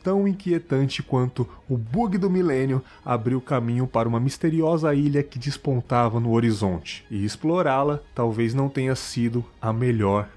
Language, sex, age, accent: Portuguese, male, 30-49, Brazilian